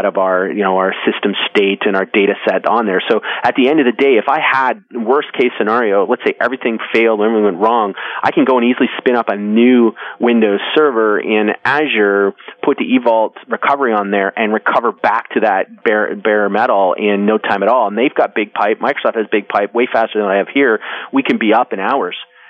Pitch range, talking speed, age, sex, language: 105-115 Hz, 230 wpm, 30-49, male, English